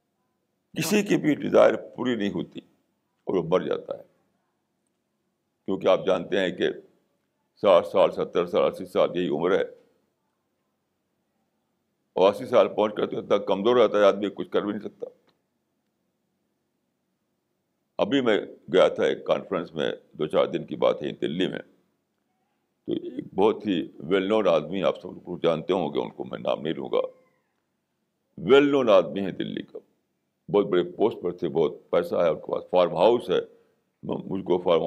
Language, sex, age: Urdu, male, 60-79